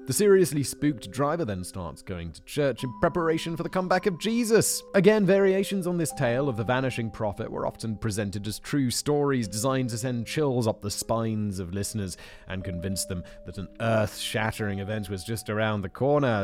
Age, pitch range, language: 30-49, 95-140 Hz, English